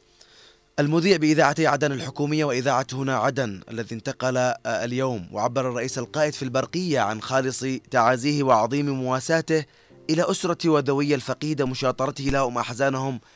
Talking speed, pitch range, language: 120 wpm, 125-145 Hz, Arabic